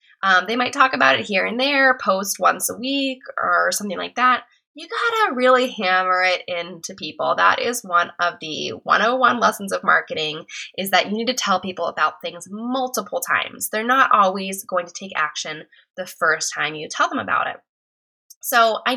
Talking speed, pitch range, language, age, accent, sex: 195 wpm, 180-250 Hz, English, 10-29, American, female